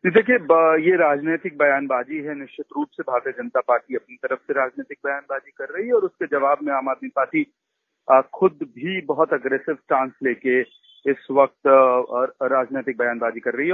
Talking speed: 165 wpm